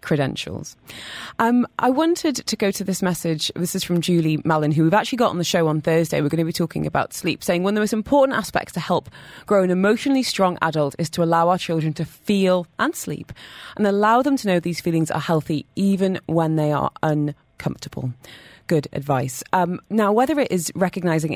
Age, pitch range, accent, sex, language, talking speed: 20-39, 155-200 Hz, British, female, English, 210 wpm